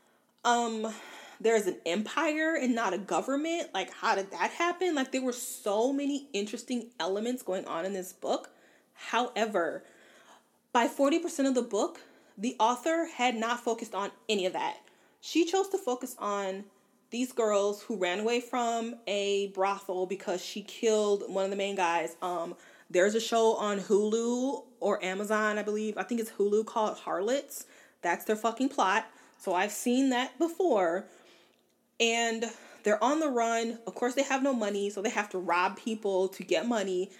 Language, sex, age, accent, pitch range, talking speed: English, female, 20-39, American, 200-275 Hz, 170 wpm